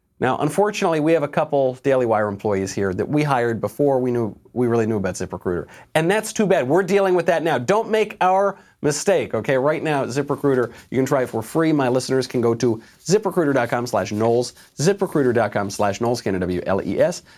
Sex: male